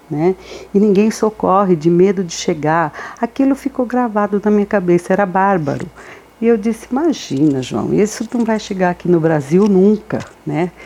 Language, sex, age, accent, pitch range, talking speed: Portuguese, female, 60-79, Brazilian, 150-205 Hz, 165 wpm